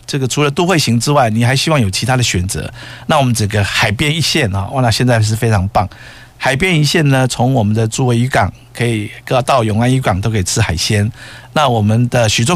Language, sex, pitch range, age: Chinese, male, 110-135 Hz, 50-69